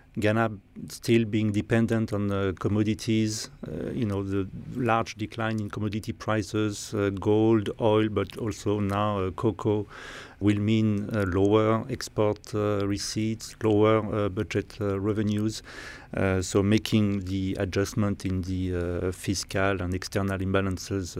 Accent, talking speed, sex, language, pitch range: French, 135 wpm, male, English, 100-115 Hz